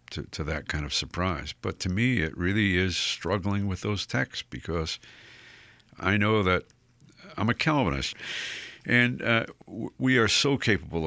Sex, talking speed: male, 165 wpm